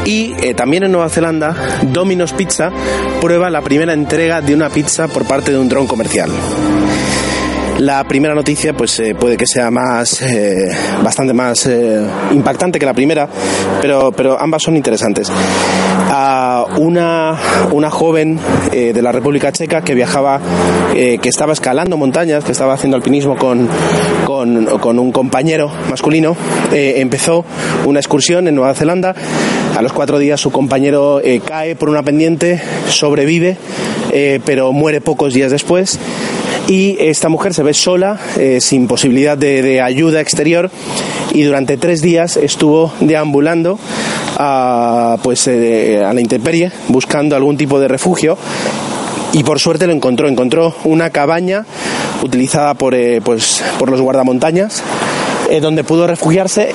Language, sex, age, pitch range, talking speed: Spanish, male, 30-49, 125-160 Hz, 145 wpm